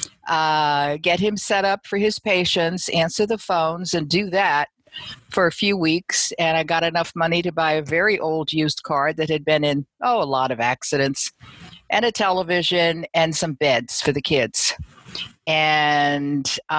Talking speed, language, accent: 175 wpm, English, American